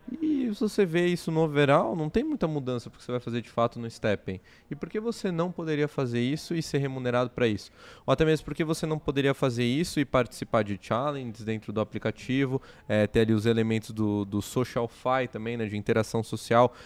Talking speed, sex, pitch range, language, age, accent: 220 wpm, male, 110-140 Hz, Portuguese, 20-39, Brazilian